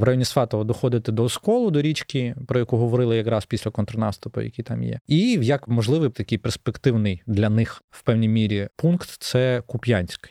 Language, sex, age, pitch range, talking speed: Ukrainian, male, 20-39, 110-135 Hz, 180 wpm